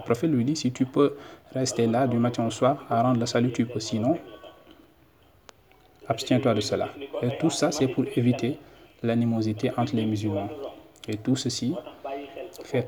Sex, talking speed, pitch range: male, 170 wpm, 110-130 Hz